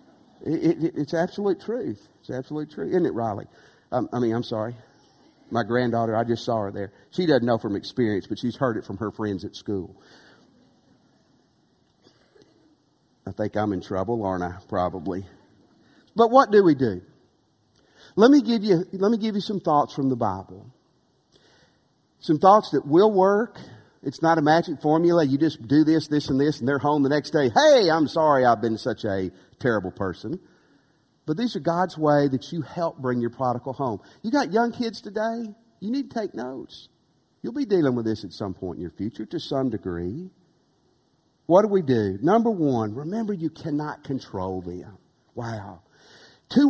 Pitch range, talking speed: 110-170 Hz, 185 wpm